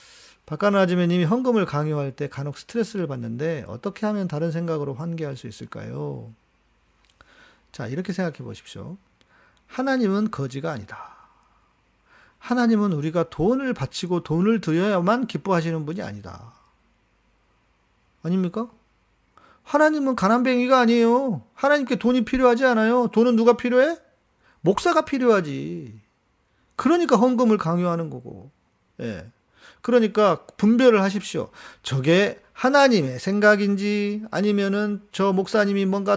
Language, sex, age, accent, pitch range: Korean, male, 40-59, native, 165-230 Hz